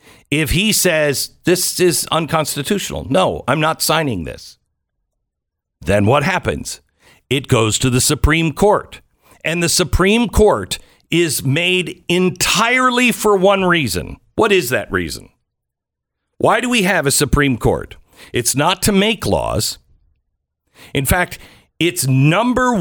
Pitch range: 120-180 Hz